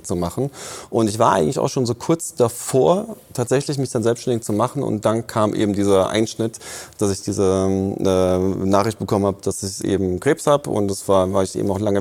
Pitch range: 100-120 Hz